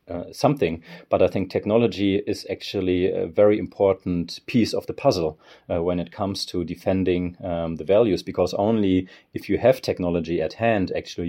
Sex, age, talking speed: male, 30-49, 175 wpm